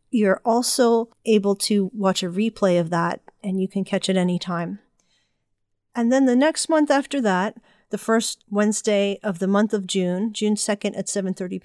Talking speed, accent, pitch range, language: 180 wpm, American, 195-220 Hz, English